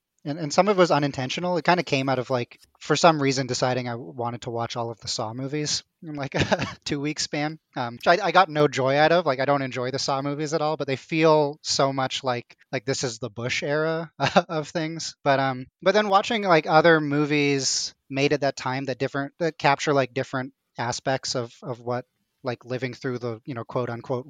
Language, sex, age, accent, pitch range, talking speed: English, male, 20-39, American, 125-155 Hz, 235 wpm